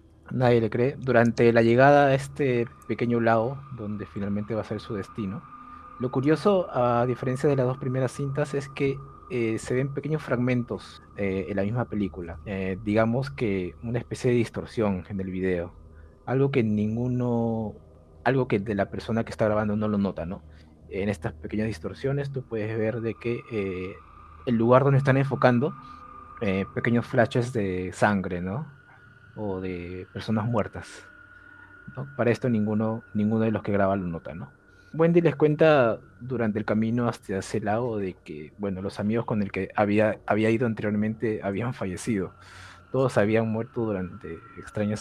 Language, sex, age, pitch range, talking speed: Spanish, male, 30-49, 95-125 Hz, 170 wpm